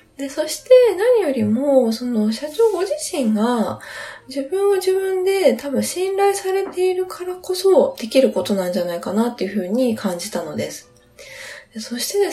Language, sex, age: Japanese, female, 20-39